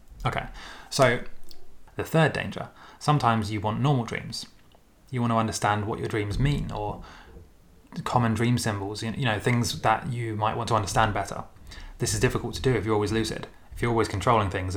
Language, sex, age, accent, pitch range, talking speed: English, male, 20-39, British, 100-115 Hz, 190 wpm